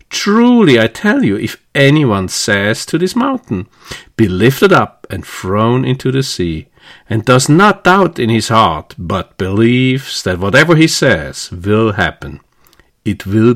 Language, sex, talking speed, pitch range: English, male, 155 wpm, 105-160 Hz